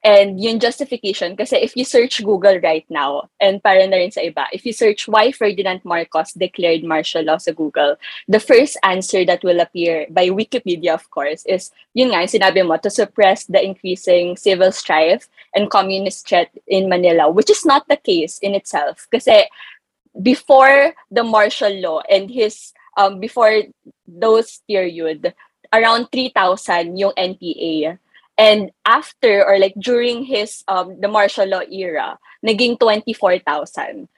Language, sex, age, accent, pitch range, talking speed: English, female, 20-39, Filipino, 185-235 Hz, 155 wpm